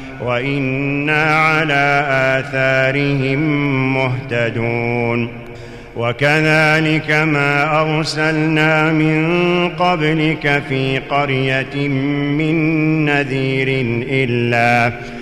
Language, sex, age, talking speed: Arabic, male, 40-59, 55 wpm